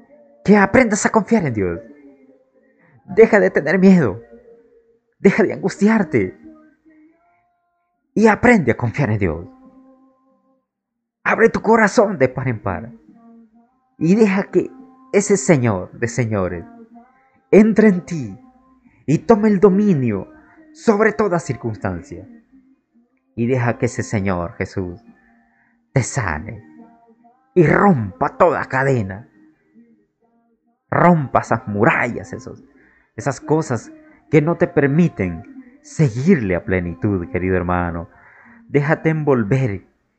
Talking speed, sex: 105 wpm, male